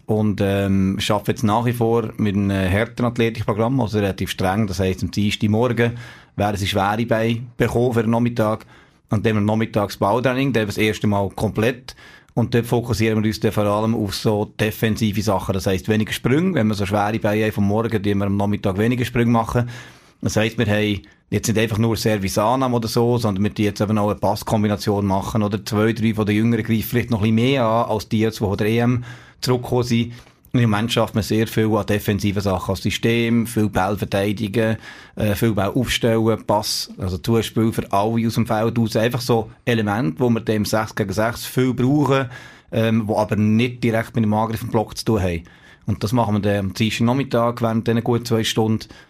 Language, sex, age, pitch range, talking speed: German, male, 30-49, 105-115 Hz, 200 wpm